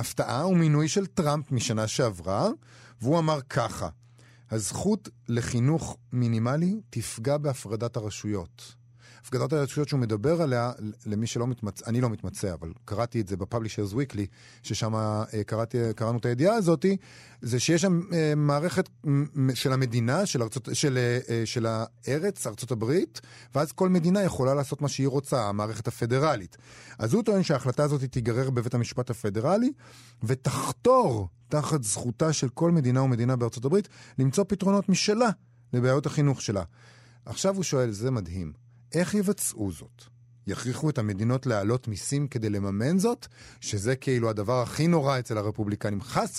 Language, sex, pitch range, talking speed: Hebrew, male, 120-155 Hz, 145 wpm